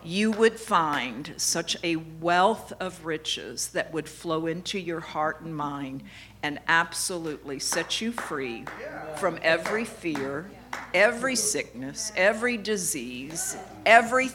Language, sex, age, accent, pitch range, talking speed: Italian, female, 50-69, American, 160-220 Hz, 120 wpm